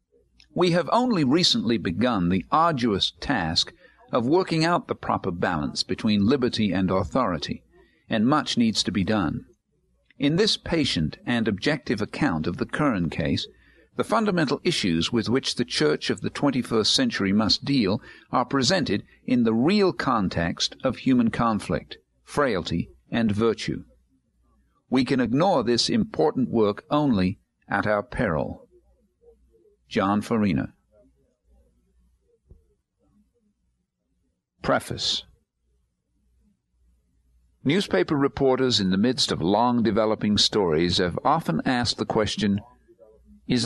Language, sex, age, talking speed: English, male, 50-69, 120 wpm